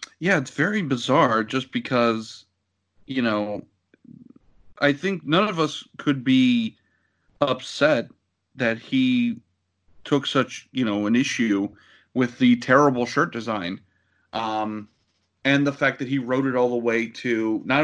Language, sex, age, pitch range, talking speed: English, male, 30-49, 110-145 Hz, 140 wpm